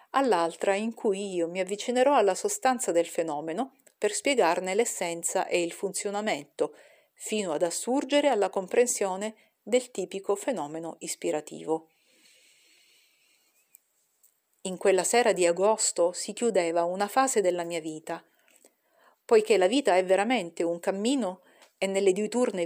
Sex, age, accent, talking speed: female, 40-59, native, 125 wpm